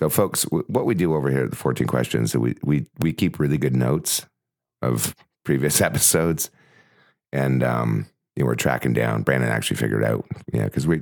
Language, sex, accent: English, male, American